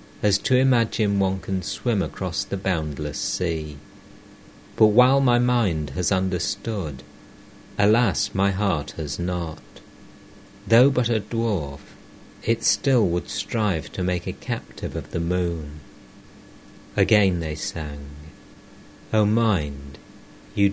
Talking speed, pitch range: 120 wpm, 80-100 Hz